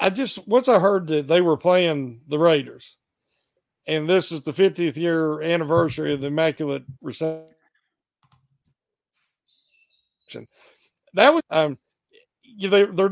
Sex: male